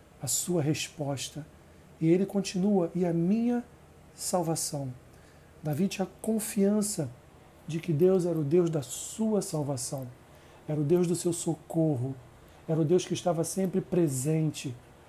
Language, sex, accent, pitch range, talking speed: Portuguese, male, Brazilian, 150-190 Hz, 140 wpm